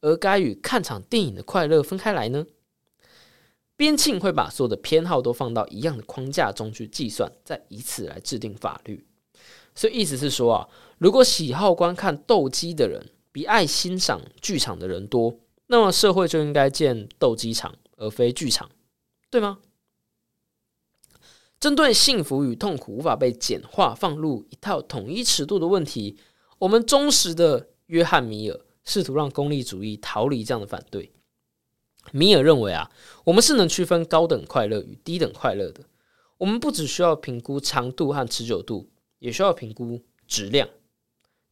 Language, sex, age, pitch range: Chinese, male, 20-39, 120-195 Hz